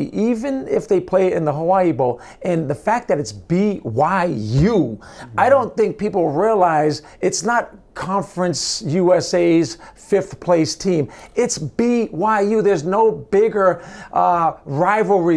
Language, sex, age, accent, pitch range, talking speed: English, male, 50-69, American, 165-195 Hz, 130 wpm